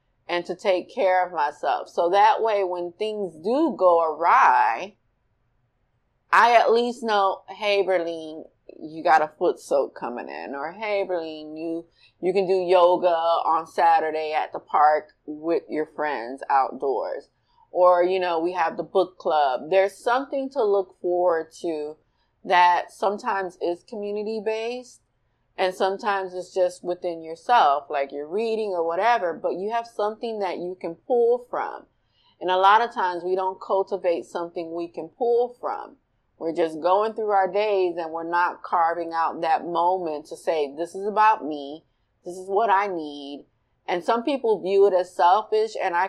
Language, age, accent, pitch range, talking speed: English, 30-49, American, 165-215 Hz, 165 wpm